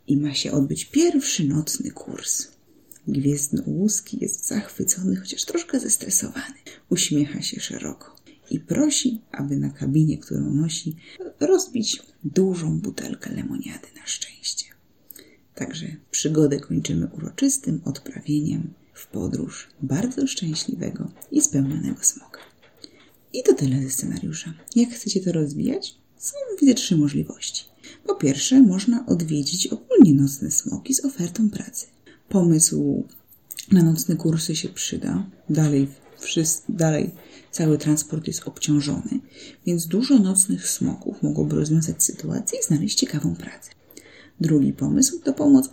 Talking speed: 120 wpm